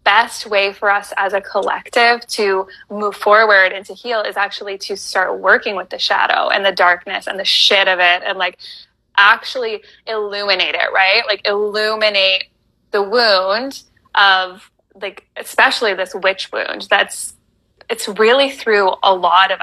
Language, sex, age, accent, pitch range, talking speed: English, female, 20-39, American, 195-220 Hz, 160 wpm